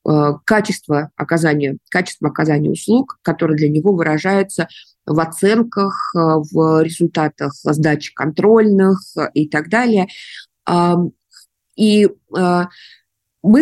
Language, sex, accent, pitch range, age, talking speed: Russian, female, native, 155-185 Hz, 20-39, 90 wpm